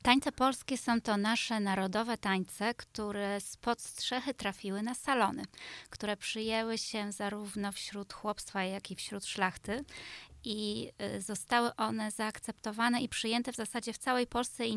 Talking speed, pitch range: 140 wpm, 195-235 Hz